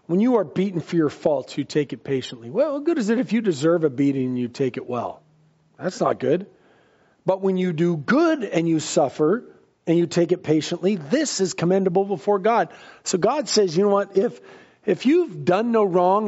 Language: English